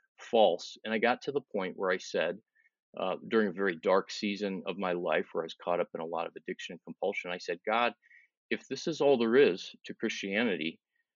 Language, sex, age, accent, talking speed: English, male, 40-59, American, 225 wpm